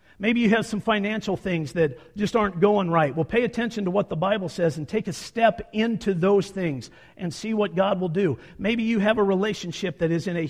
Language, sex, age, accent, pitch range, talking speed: English, male, 50-69, American, 160-215 Hz, 235 wpm